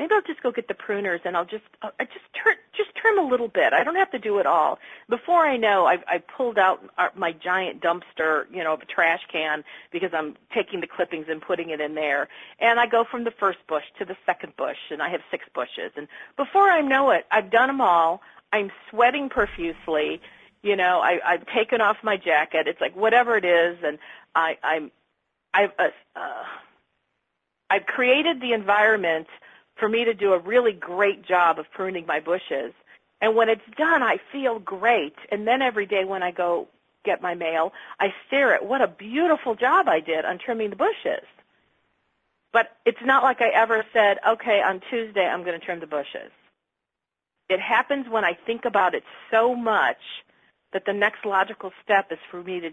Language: English